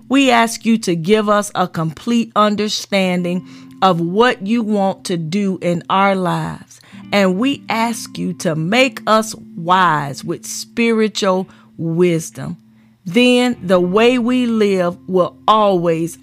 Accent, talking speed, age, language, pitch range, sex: American, 135 wpm, 40-59, English, 175-230 Hz, female